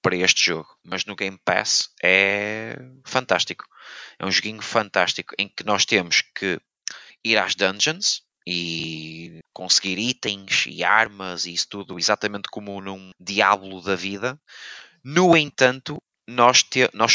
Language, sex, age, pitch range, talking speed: Portuguese, male, 20-39, 100-125 Hz, 135 wpm